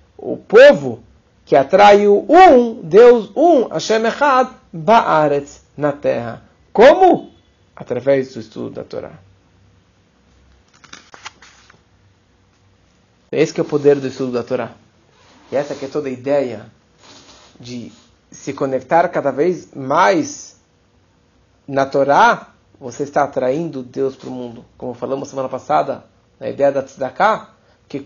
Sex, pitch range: male, 140-225 Hz